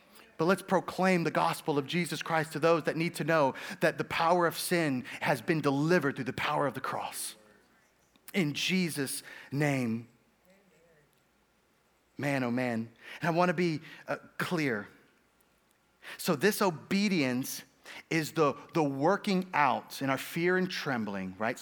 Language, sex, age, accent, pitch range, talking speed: English, male, 30-49, American, 130-170 Hz, 150 wpm